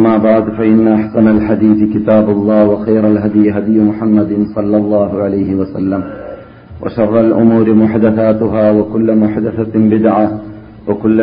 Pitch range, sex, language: 105-115 Hz, male, Malayalam